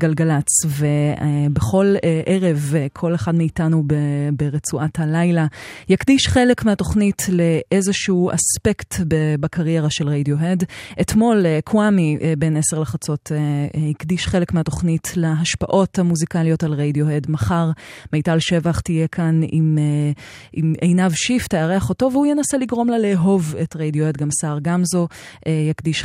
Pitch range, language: 150-180 Hz, Hebrew